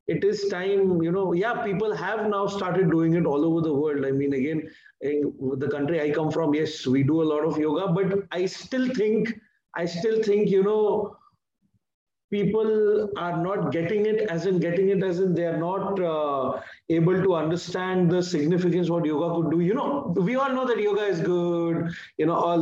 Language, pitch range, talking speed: English, 160-200 Hz, 205 wpm